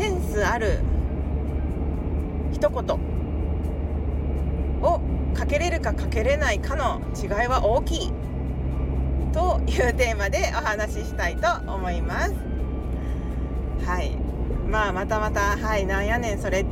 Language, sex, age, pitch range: Japanese, female, 40-59, 65-75 Hz